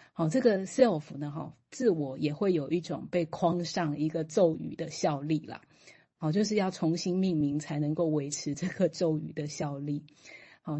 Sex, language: female, Chinese